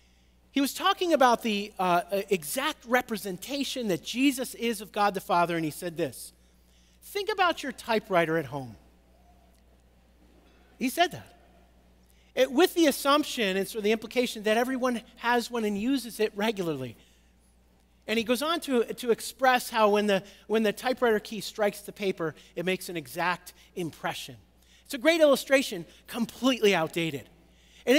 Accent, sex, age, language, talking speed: American, male, 40-59, English, 160 wpm